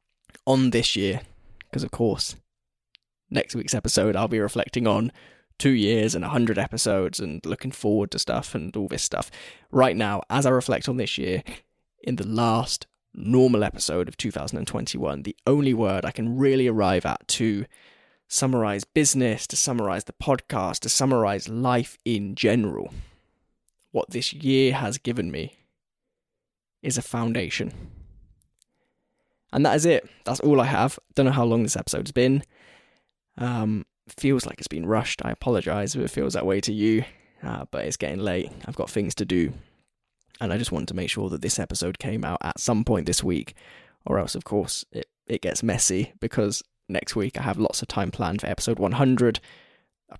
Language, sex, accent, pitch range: English, male, British, 100-125 Hz